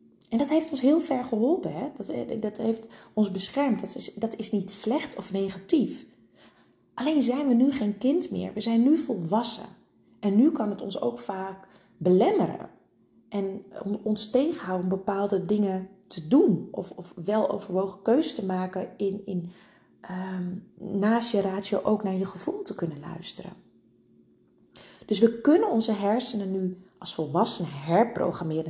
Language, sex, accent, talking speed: Dutch, female, Dutch, 155 wpm